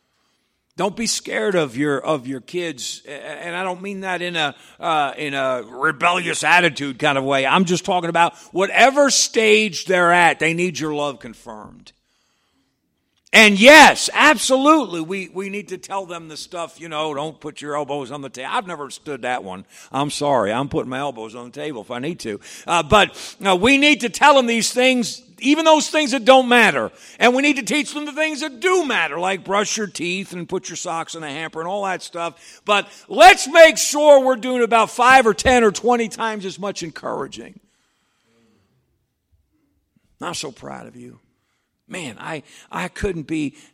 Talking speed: 195 wpm